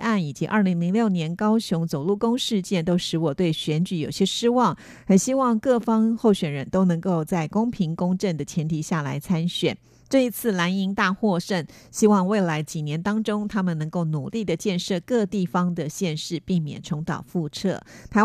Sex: female